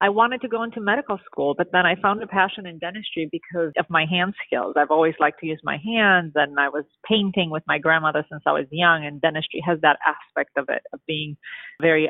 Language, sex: English, female